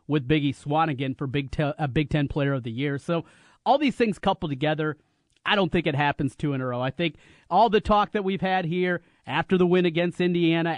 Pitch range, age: 140-170 Hz, 30-49